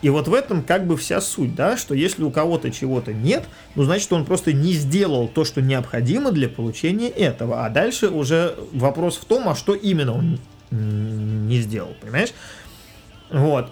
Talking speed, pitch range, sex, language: 180 wpm, 125-165 Hz, male, Russian